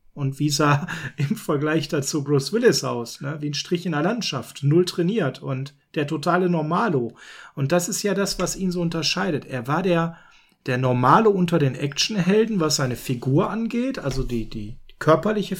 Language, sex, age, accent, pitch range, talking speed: German, male, 40-59, German, 145-185 Hz, 180 wpm